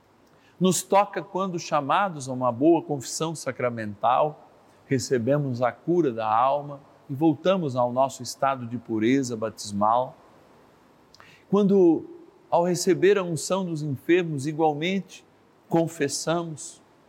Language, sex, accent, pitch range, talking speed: Portuguese, male, Brazilian, 125-170 Hz, 110 wpm